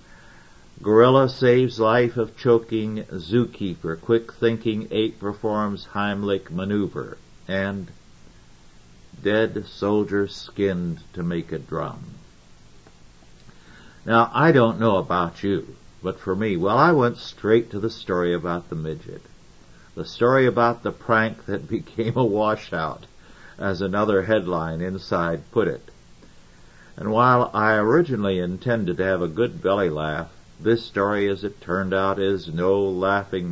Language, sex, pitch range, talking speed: English, male, 90-115 Hz, 130 wpm